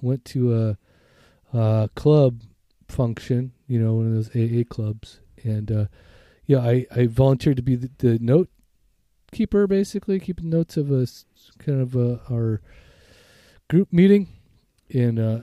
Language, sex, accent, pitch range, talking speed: English, male, American, 110-145 Hz, 145 wpm